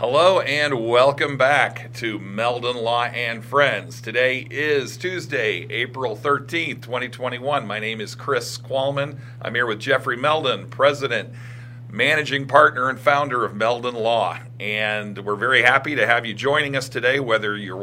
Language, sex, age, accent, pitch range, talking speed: English, male, 40-59, American, 115-130 Hz, 150 wpm